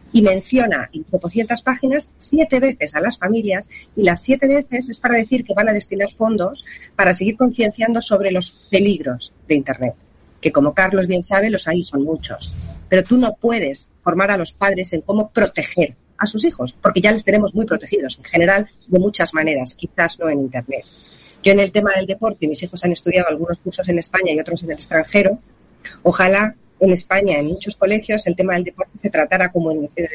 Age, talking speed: 40-59, 205 wpm